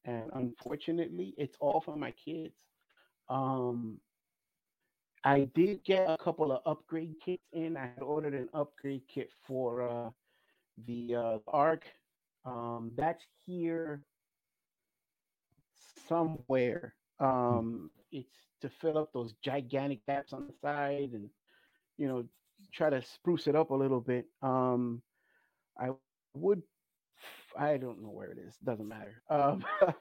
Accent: American